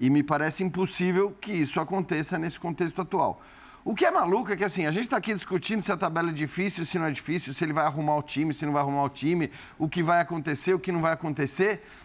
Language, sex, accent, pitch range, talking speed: Portuguese, male, Brazilian, 160-200 Hz, 260 wpm